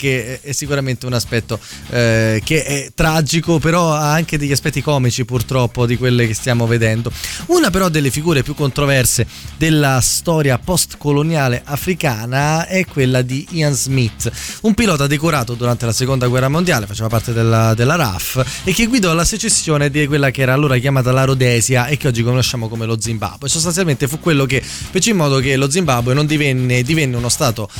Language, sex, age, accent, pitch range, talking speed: Italian, male, 20-39, native, 120-155 Hz, 180 wpm